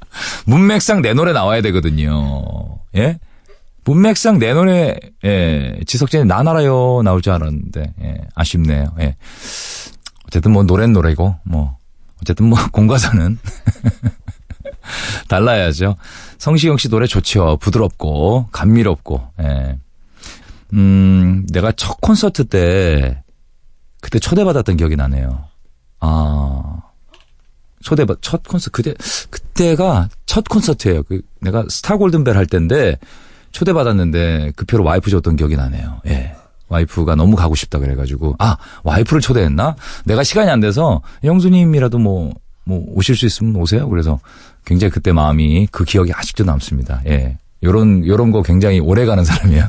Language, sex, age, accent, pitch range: Korean, male, 40-59, native, 80-120 Hz